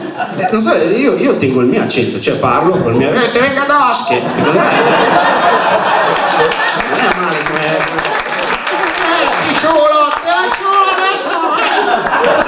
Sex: male